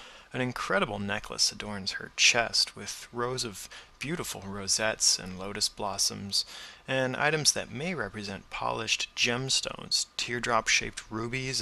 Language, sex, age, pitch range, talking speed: English, male, 30-49, 100-120 Hz, 120 wpm